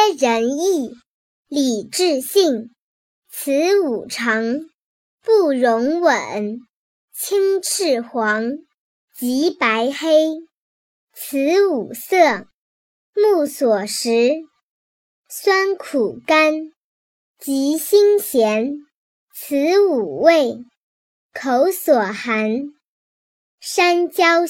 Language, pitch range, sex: Chinese, 245-350 Hz, male